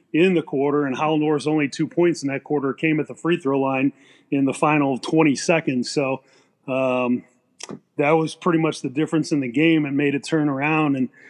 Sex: male